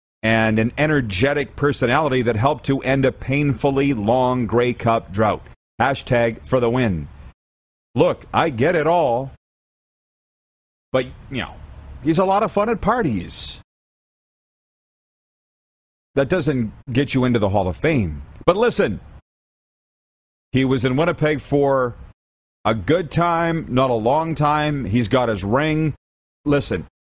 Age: 40-59